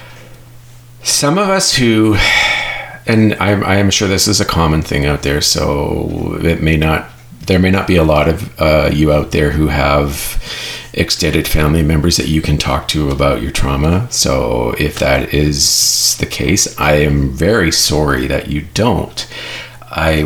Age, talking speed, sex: 40-59, 170 wpm, male